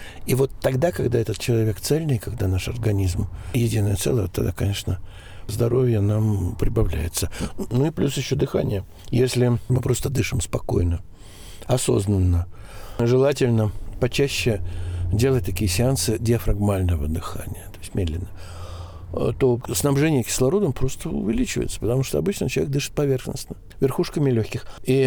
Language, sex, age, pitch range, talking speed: Russian, male, 60-79, 100-135 Hz, 125 wpm